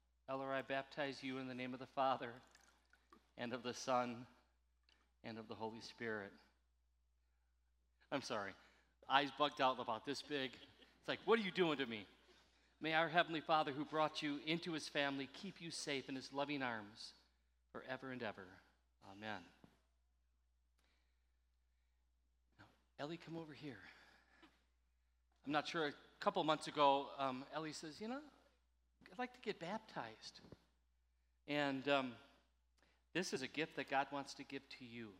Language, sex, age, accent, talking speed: English, male, 40-59, American, 150 wpm